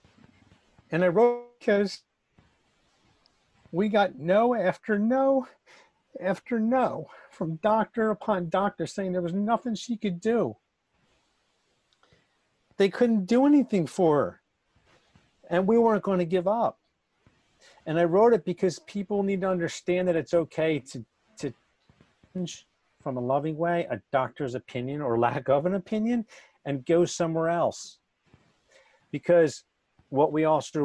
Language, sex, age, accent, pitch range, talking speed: English, male, 50-69, American, 125-195 Hz, 140 wpm